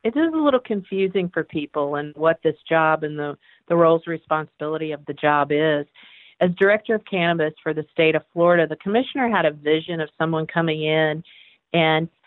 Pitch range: 155-175 Hz